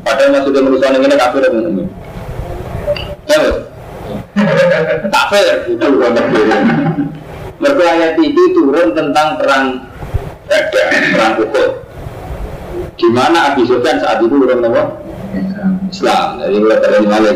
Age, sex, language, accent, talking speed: 40-59, male, Indonesian, native, 85 wpm